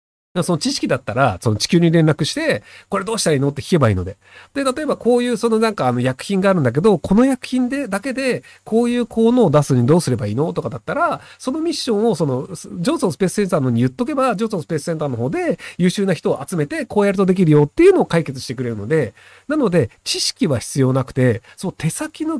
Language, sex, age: Japanese, male, 40-59